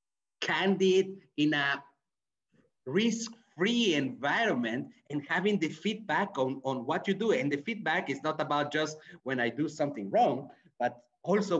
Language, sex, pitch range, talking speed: English, male, 140-190 Hz, 145 wpm